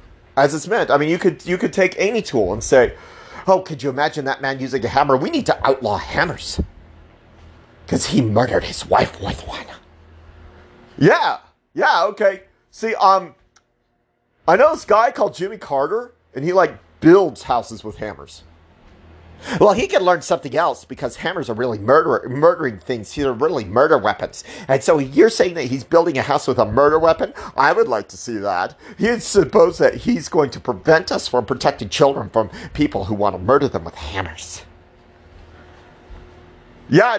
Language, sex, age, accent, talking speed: English, male, 40-59, American, 180 wpm